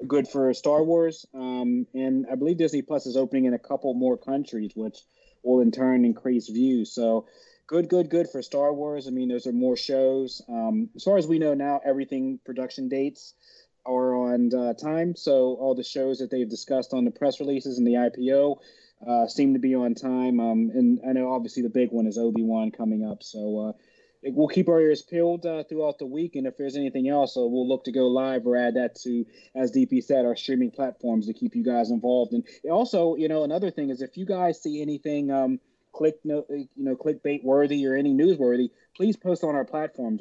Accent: American